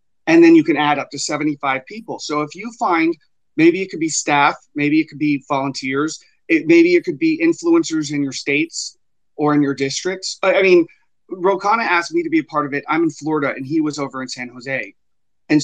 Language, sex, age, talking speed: English, male, 30-49, 225 wpm